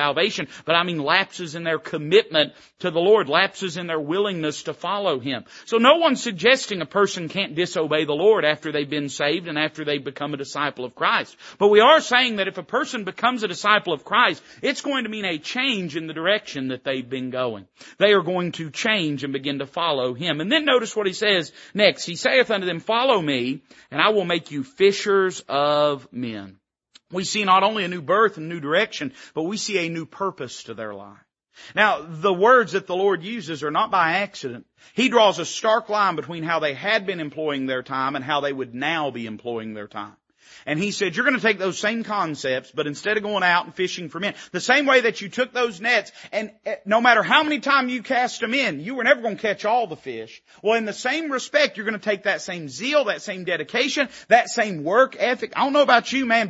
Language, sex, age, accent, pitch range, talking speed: English, male, 40-59, American, 155-230 Hz, 235 wpm